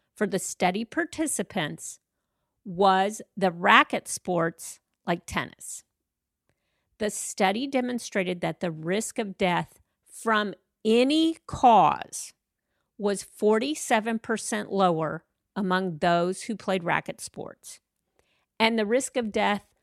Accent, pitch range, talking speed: American, 185-230 Hz, 105 wpm